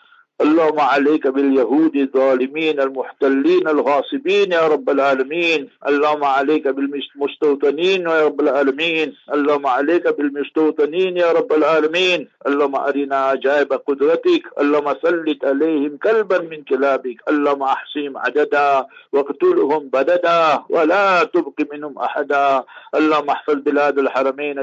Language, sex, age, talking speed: English, male, 50-69, 105 wpm